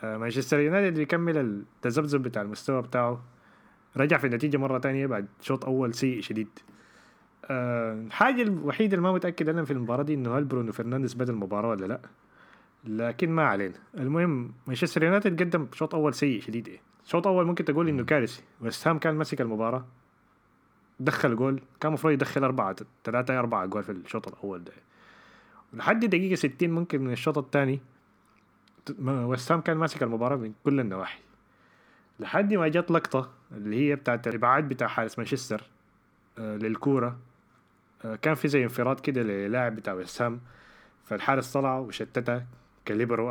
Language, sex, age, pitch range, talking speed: Arabic, male, 30-49, 115-155 Hz, 150 wpm